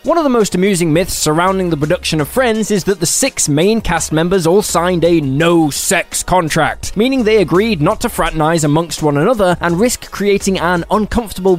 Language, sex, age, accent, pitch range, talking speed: English, male, 10-29, British, 160-210 Hz, 190 wpm